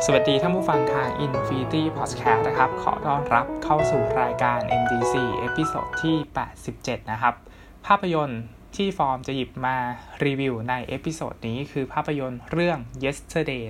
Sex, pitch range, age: male, 115-145 Hz, 20-39